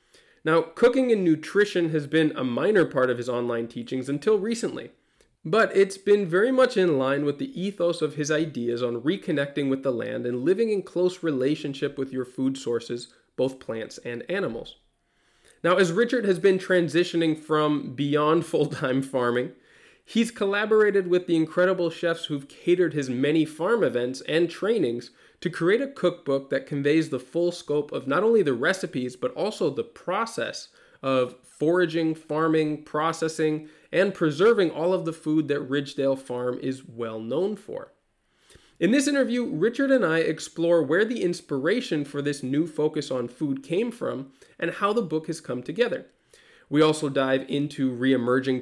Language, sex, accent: English, male, American